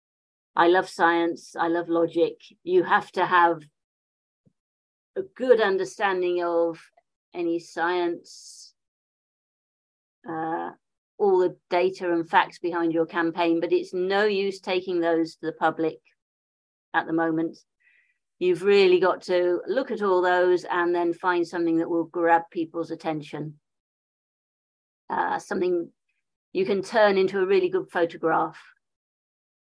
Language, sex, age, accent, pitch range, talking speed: English, female, 50-69, British, 170-225 Hz, 130 wpm